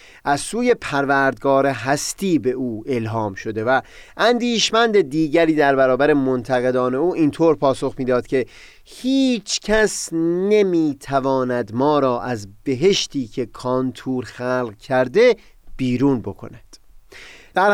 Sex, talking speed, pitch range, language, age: male, 115 wpm, 125-175 Hz, Persian, 30-49